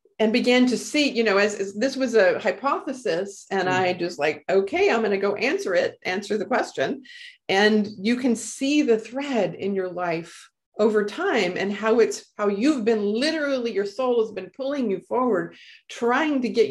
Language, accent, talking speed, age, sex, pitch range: English, American, 195 wpm, 40-59, female, 190-240 Hz